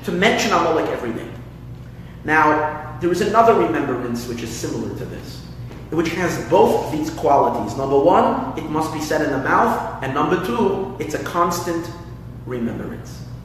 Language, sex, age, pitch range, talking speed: English, male, 30-49, 125-165 Hz, 160 wpm